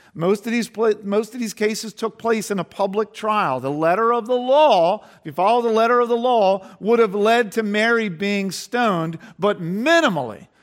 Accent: American